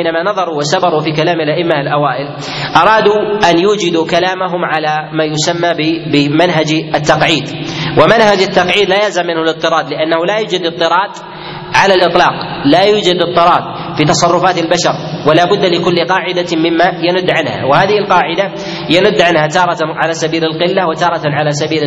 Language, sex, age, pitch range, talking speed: Arabic, male, 30-49, 155-180 Hz, 135 wpm